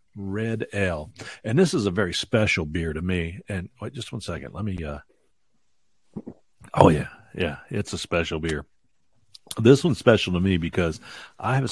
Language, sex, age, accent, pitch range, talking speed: English, male, 50-69, American, 90-105 Hz, 175 wpm